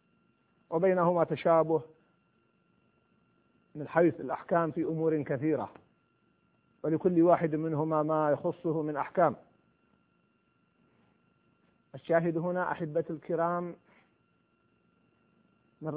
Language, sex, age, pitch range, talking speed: Arabic, male, 50-69, 145-170 Hz, 75 wpm